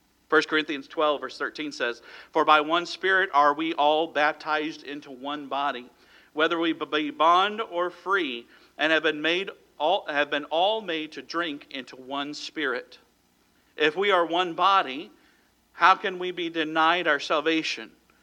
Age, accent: 50-69, American